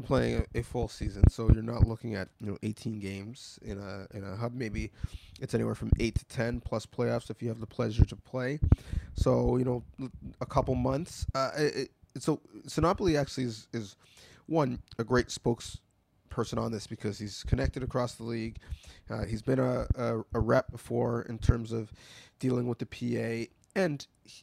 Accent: American